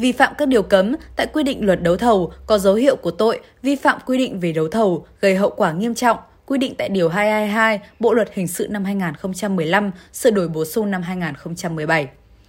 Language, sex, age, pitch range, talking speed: Vietnamese, female, 20-39, 185-250 Hz, 215 wpm